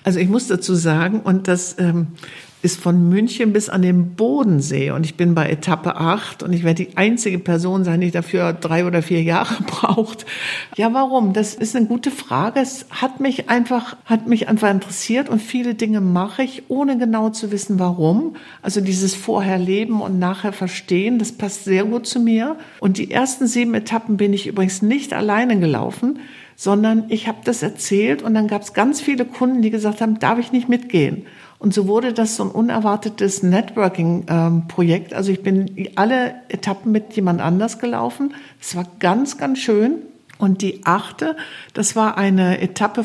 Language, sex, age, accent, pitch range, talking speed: German, female, 60-79, German, 185-225 Hz, 185 wpm